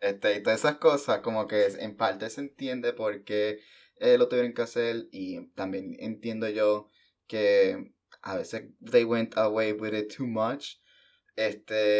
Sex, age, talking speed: male, 20-39, 165 wpm